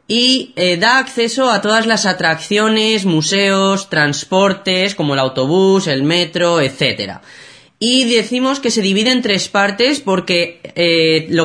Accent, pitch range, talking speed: Spanish, 155-220 Hz, 140 wpm